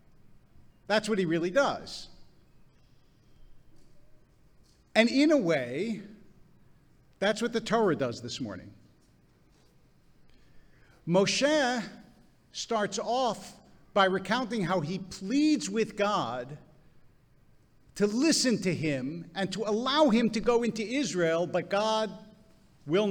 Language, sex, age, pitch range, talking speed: English, male, 50-69, 145-215 Hz, 105 wpm